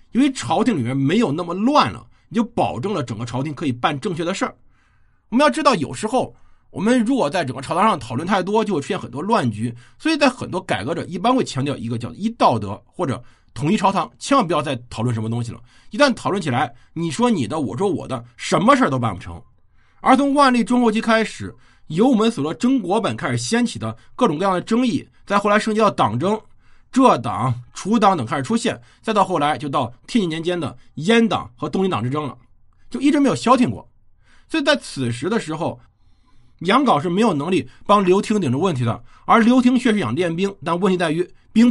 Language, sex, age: Chinese, male, 50-69